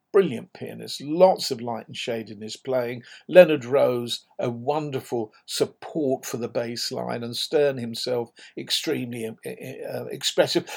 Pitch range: 125-195 Hz